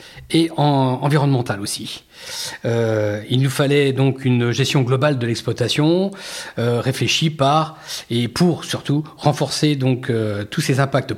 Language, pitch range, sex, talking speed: French, 120-155 Hz, male, 140 wpm